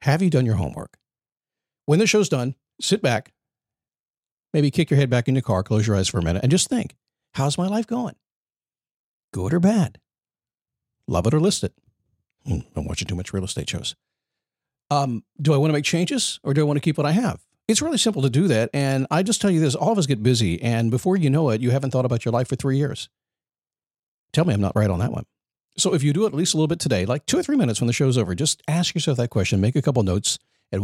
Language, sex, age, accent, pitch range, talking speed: English, male, 50-69, American, 110-155 Hz, 255 wpm